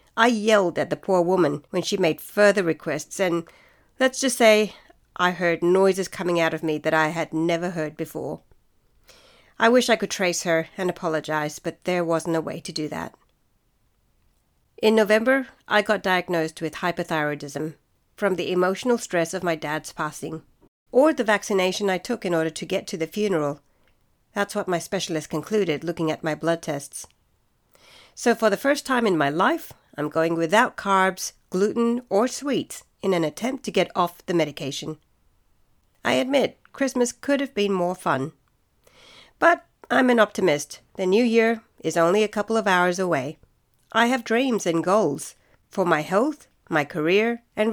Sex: female